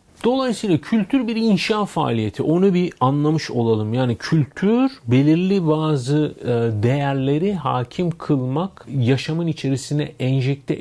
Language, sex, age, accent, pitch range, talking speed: Turkish, male, 40-59, native, 130-165 Hz, 105 wpm